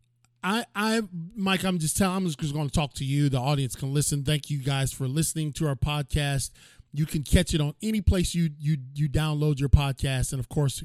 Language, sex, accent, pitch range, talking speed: English, male, American, 120-160 Hz, 225 wpm